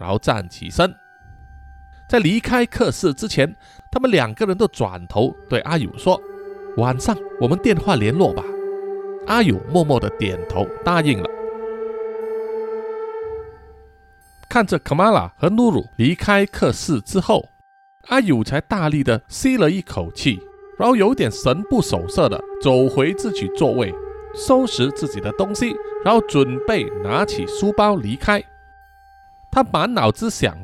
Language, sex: Chinese, male